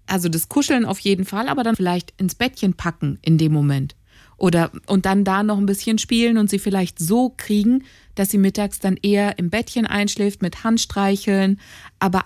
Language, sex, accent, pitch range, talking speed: German, female, German, 170-205 Hz, 190 wpm